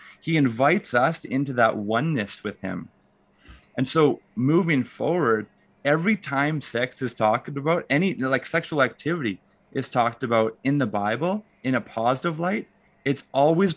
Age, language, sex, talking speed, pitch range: 30-49, English, male, 150 wpm, 115-165 Hz